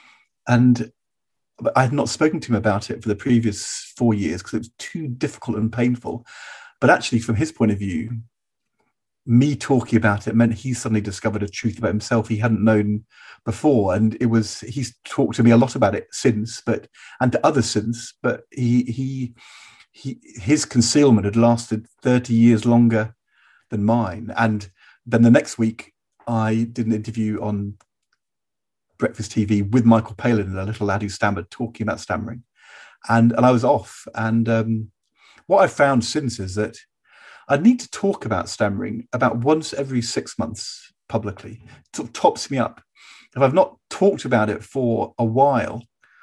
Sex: male